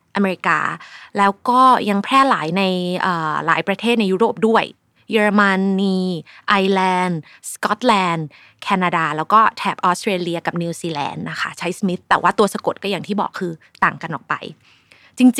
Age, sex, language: 20-39, female, Thai